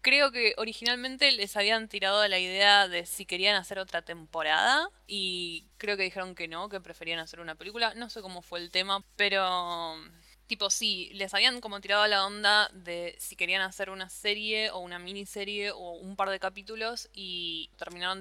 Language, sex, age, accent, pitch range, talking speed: Spanish, female, 10-29, Argentinian, 180-210 Hz, 185 wpm